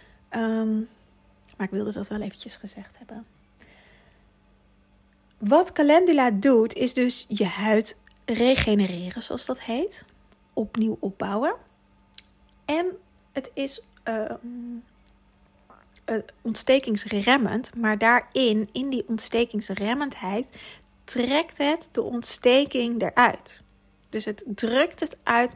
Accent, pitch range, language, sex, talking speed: Dutch, 215-250 Hz, Dutch, female, 100 wpm